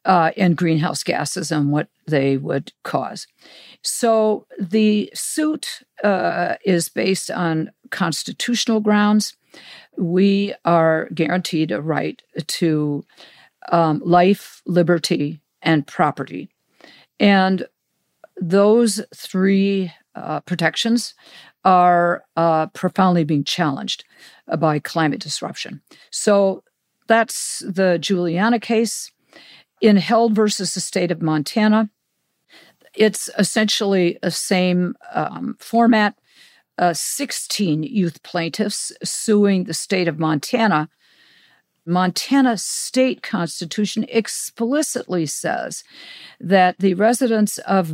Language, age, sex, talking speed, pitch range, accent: English, 50-69, female, 100 wpm, 165-215 Hz, American